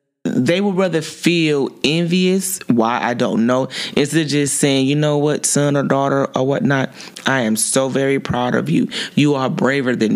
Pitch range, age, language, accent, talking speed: 130-160 Hz, 20-39, English, American, 190 wpm